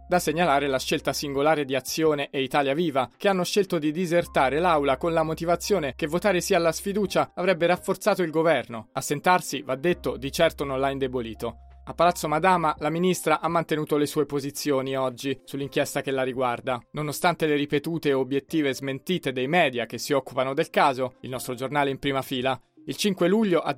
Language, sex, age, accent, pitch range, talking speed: Italian, male, 30-49, native, 135-175 Hz, 185 wpm